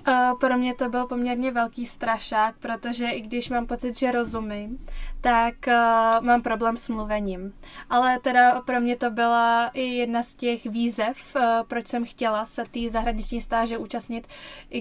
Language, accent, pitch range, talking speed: Czech, native, 225-245 Hz, 165 wpm